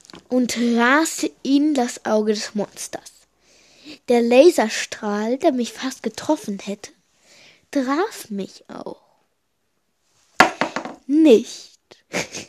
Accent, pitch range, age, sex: German, 235-300 Hz, 20-39, female